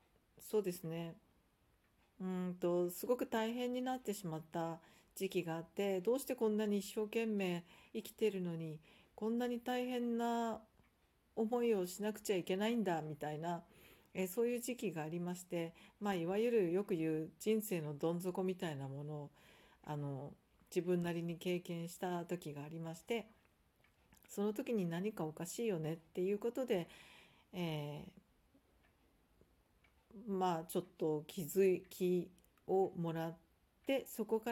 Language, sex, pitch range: Japanese, female, 160-205 Hz